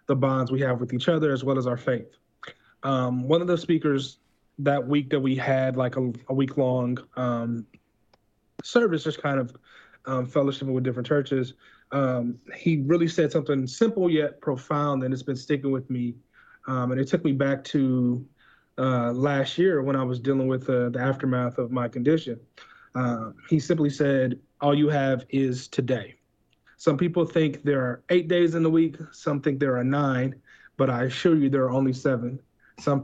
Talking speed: 190 wpm